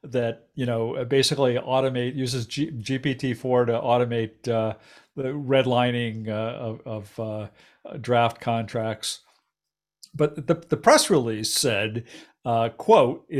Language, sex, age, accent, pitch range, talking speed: English, male, 50-69, American, 115-140 Hz, 110 wpm